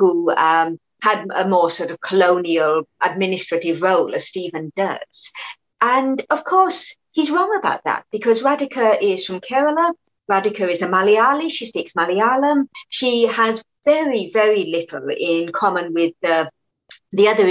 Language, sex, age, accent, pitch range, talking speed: English, female, 50-69, British, 185-265 Hz, 145 wpm